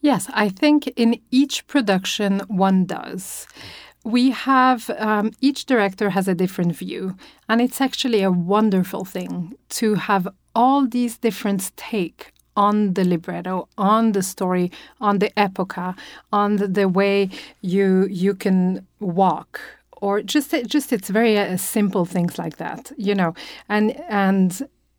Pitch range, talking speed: 190-230 Hz, 145 wpm